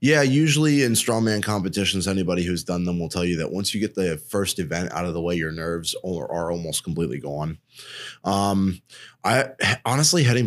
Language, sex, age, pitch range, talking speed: English, male, 20-39, 80-100 Hz, 190 wpm